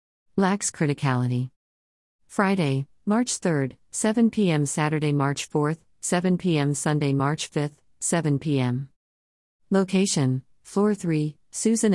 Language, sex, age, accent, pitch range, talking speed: English, female, 50-69, American, 130-160 Hz, 105 wpm